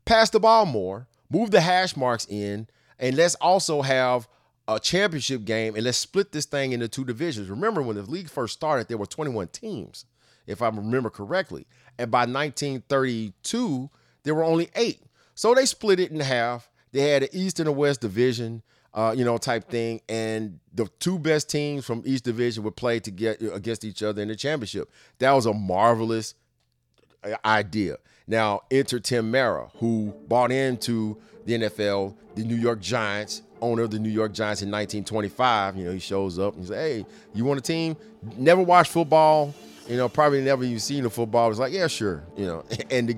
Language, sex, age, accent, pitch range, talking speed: English, male, 30-49, American, 110-135 Hz, 195 wpm